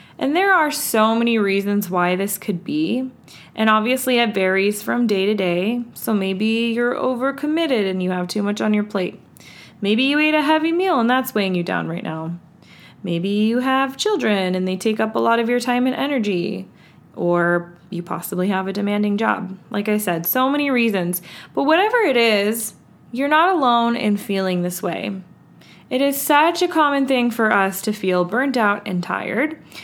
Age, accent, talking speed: 20-39, American, 195 wpm